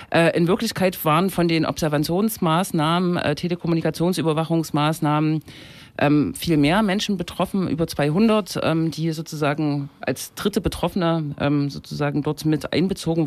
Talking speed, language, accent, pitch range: 100 wpm, German, German, 145-175 Hz